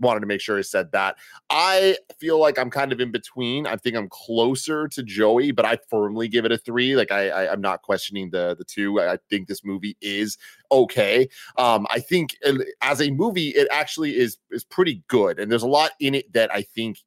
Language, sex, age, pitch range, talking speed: English, male, 30-49, 105-145 Hz, 225 wpm